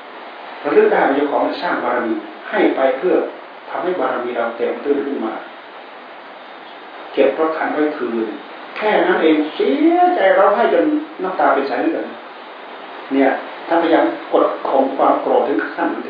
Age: 60-79